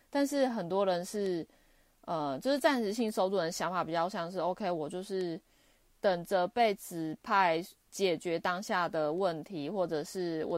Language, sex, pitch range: Chinese, female, 165-205 Hz